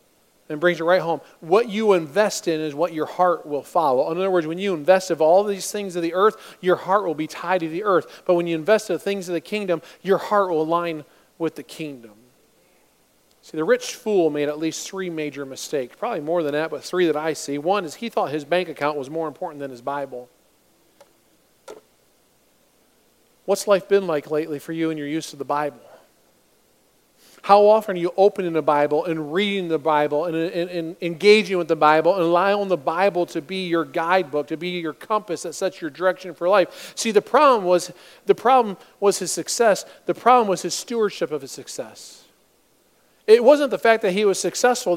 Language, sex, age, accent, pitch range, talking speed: English, male, 40-59, American, 160-200 Hz, 215 wpm